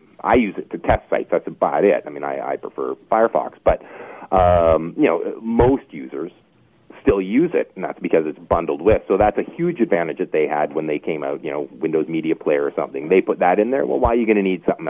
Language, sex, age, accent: English, male, 40-59, American